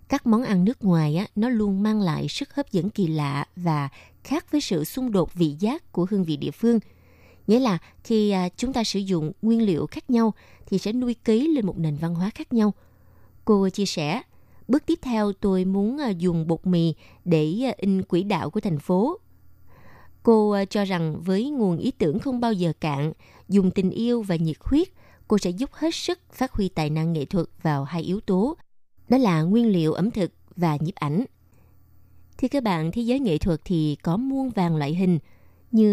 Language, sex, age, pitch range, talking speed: Vietnamese, female, 20-39, 165-225 Hz, 205 wpm